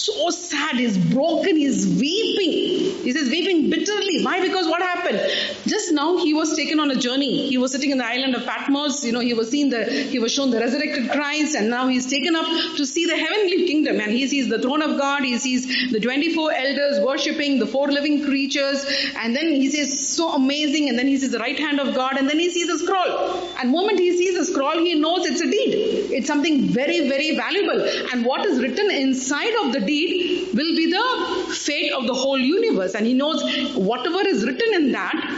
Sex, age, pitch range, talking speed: female, 30-49, 265-330 Hz, 220 wpm